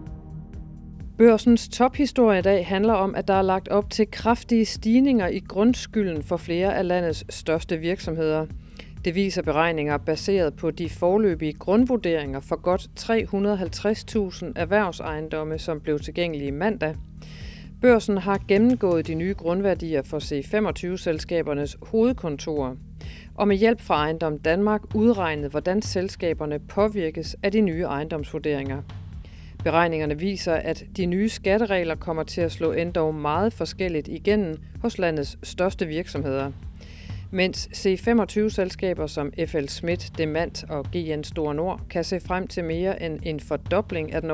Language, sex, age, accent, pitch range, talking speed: Danish, female, 40-59, native, 150-200 Hz, 135 wpm